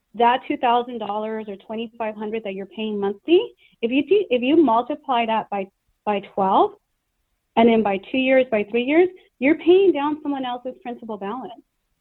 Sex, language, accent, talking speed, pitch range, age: female, English, American, 185 wpm, 230-330 Hz, 30-49